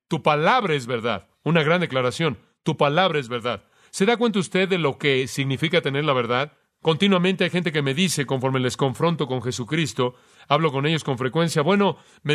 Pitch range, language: 140-180 Hz, Spanish